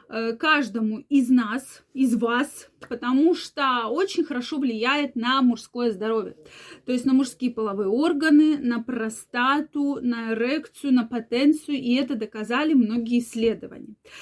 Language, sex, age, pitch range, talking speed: Russian, female, 20-39, 235-310 Hz, 125 wpm